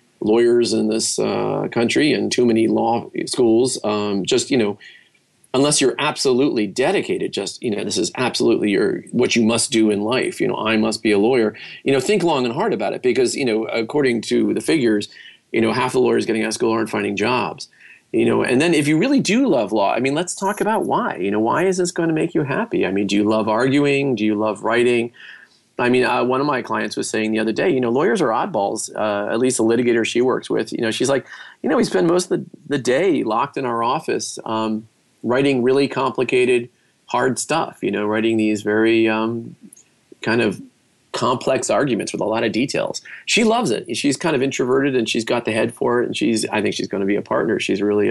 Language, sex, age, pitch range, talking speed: English, male, 40-59, 110-140 Hz, 240 wpm